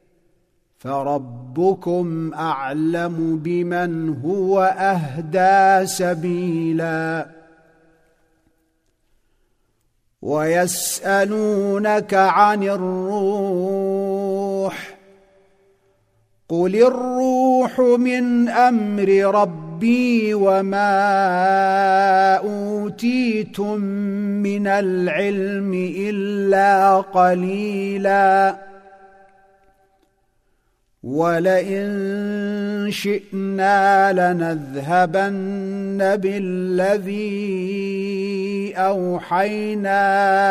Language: Arabic